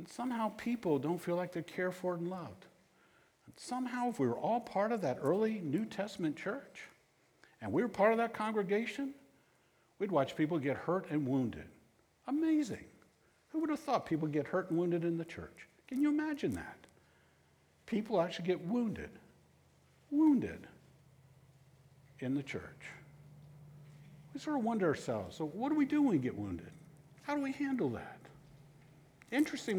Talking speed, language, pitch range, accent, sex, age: 165 wpm, English, 150-240 Hz, American, male, 60-79